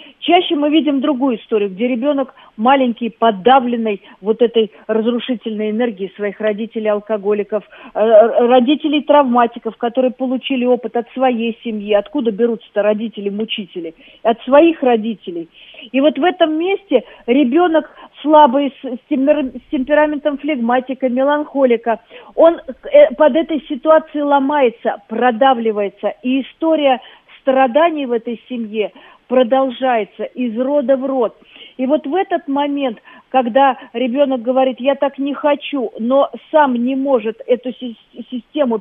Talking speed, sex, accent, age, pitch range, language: 115 wpm, female, native, 40-59, 225-280 Hz, Russian